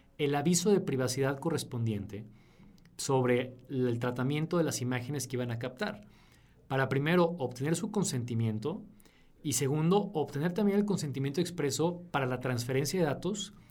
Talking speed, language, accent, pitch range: 140 wpm, Spanish, Mexican, 130-175 Hz